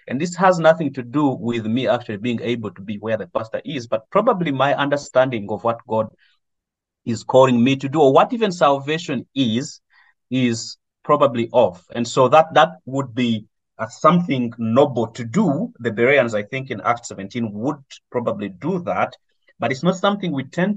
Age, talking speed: 30-49, 190 wpm